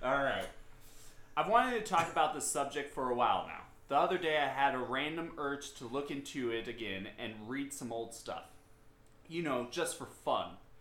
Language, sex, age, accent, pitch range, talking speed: English, male, 20-39, American, 115-150 Hz, 200 wpm